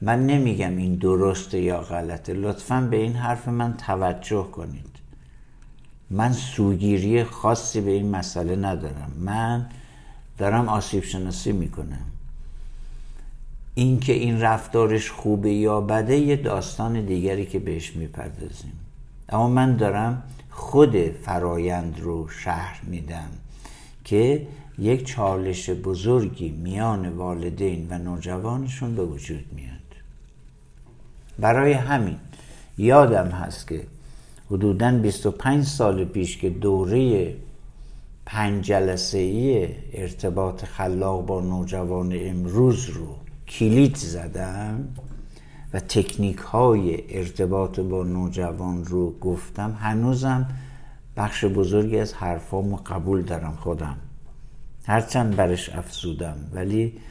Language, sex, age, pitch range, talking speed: Persian, male, 60-79, 90-115 Hz, 100 wpm